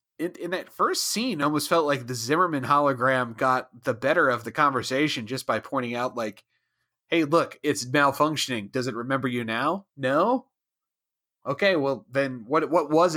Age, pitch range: 30-49, 125-155 Hz